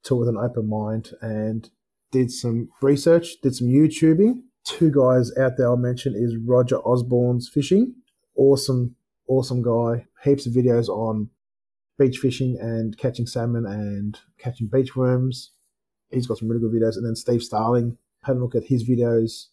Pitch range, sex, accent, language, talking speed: 110-130 Hz, male, Australian, English, 165 wpm